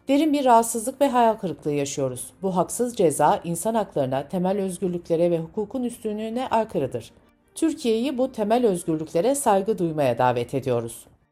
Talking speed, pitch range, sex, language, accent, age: 140 wpm, 160-235 Hz, female, Turkish, native, 60-79